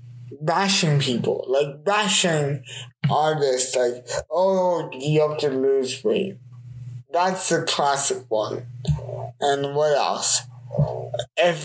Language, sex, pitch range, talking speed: English, male, 125-185 Hz, 105 wpm